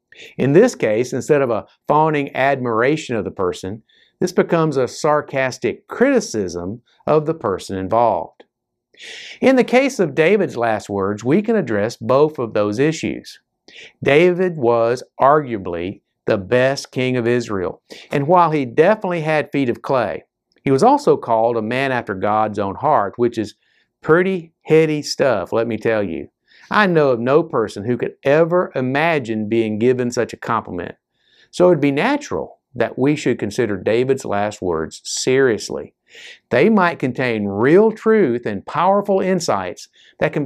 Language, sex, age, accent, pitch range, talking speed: English, male, 50-69, American, 115-175 Hz, 155 wpm